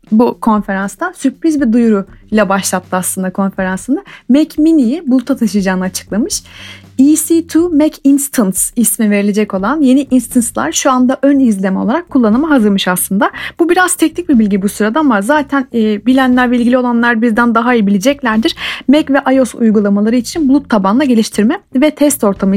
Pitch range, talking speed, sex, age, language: 210-280 Hz, 150 wpm, female, 30-49, Turkish